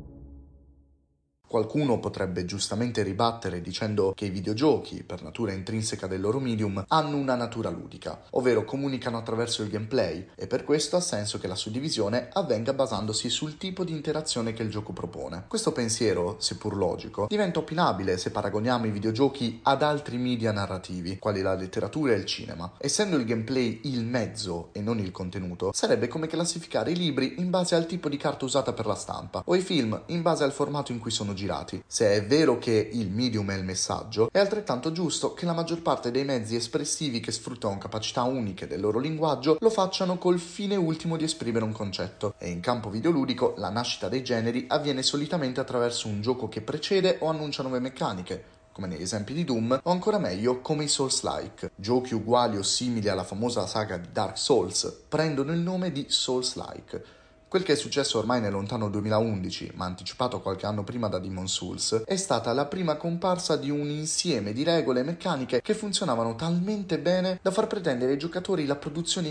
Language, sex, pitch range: Italian, male, 105-155 Hz